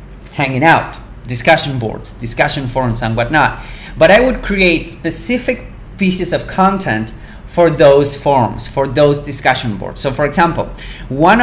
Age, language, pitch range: 30-49, English, 130-170 Hz